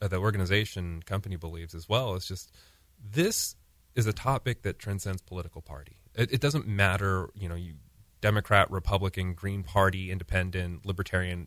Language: English